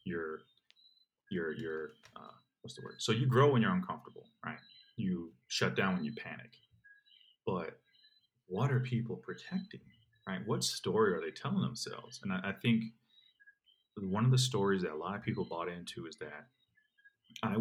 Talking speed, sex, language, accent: 170 wpm, male, English, American